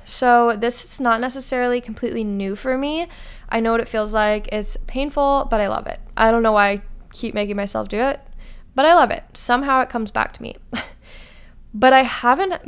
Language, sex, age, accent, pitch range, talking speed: English, female, 20-39, American, 215-250 Hz, 210 wpm